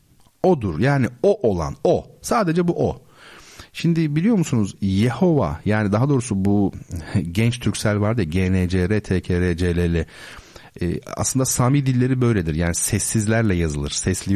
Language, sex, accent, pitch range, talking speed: Turkish, male, native, 95-135 Hz, 135 wpm